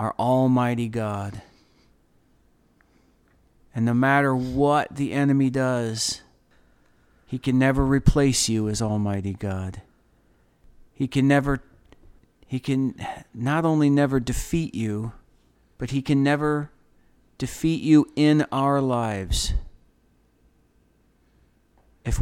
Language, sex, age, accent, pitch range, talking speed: English, male, 40-59, American, 100-135 Hz, 105 wpm